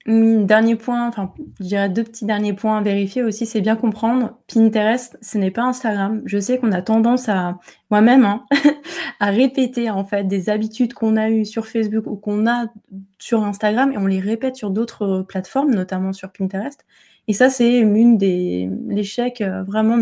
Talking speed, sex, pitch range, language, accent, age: 185 wpm, female, 195-225 Hz, French, French, 20-39